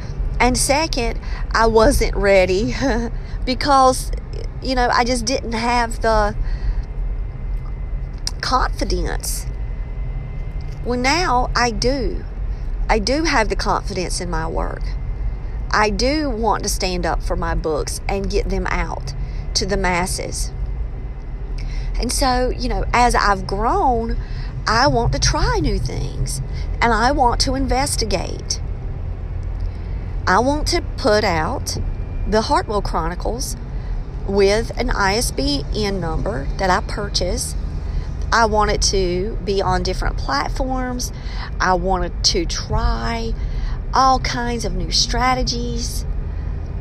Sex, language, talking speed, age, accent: female, English, 120 wpm, 50-69, American